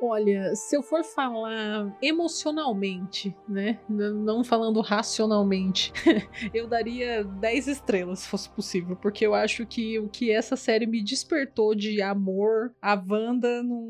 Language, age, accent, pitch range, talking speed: Portuguese, 20-39, Brazilian, 205-245 Hz, 140 wpm